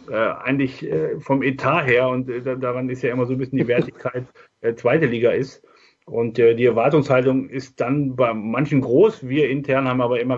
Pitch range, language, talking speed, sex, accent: 125-140 Hz, German, 200 wpm, male, German